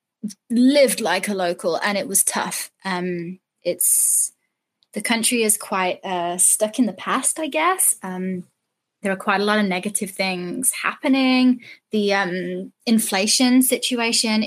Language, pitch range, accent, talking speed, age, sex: English, 185-240 Hz, British, 145 wpm, 20-39, female